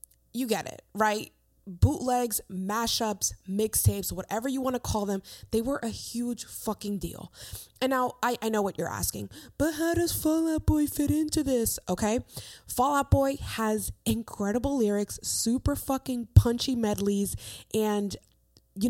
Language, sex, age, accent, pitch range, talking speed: English, female, 20-39, American, 180-230 Hz, 155 wpm